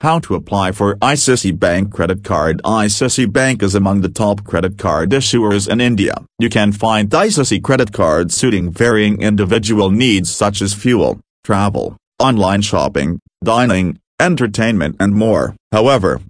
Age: 40-59